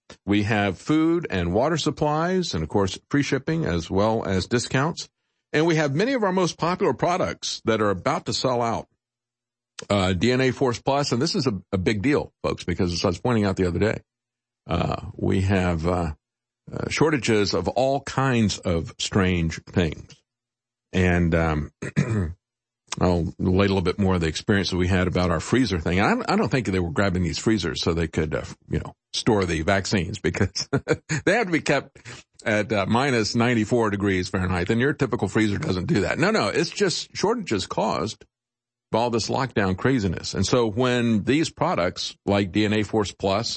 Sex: male